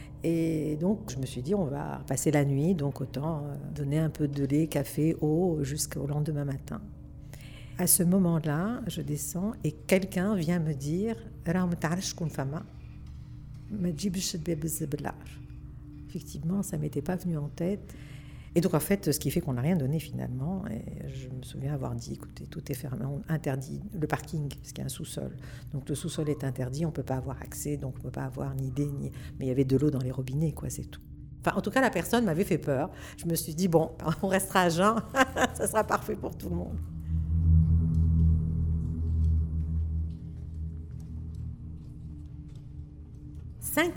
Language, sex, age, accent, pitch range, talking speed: French, female, 60-79, French, 125-175 Hz, 180 wpm